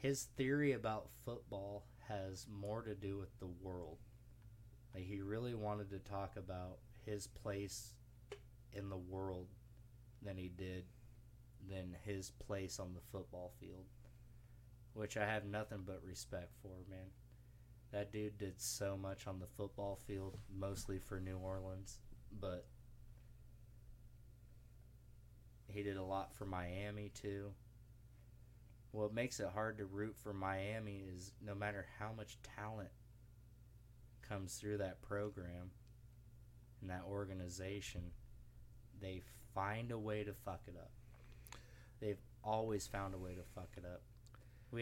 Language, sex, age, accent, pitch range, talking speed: English, male, 20-39, American, 95-115 Hz, 135 wpm